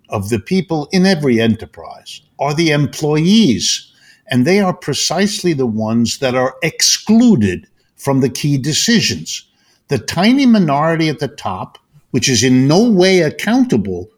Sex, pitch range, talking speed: male, 115-170 Hz, 145 wpm